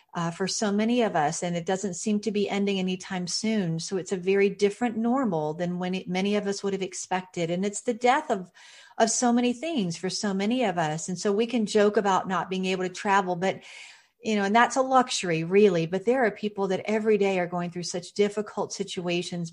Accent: American